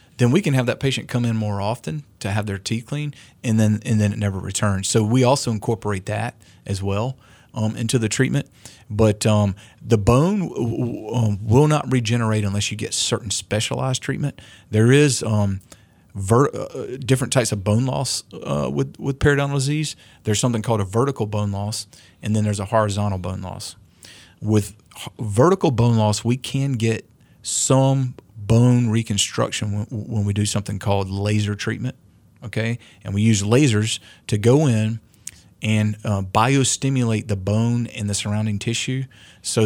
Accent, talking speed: American, 175 wpm